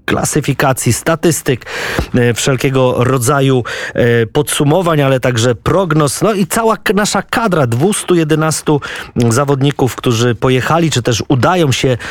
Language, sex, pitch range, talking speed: Polish, male, 120-145 Hz, 105 wpm